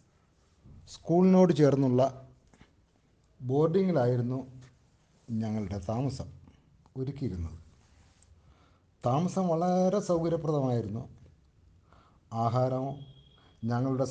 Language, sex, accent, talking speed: Malayalam, male, native, 45 wpm